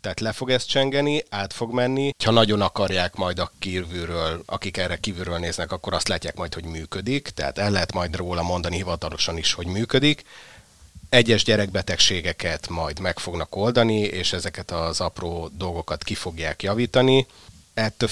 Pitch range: 90-110 Hz